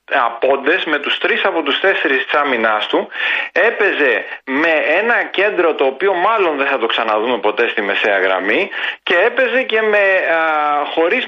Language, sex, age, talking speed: Greek, male, 30-49, 155 wpm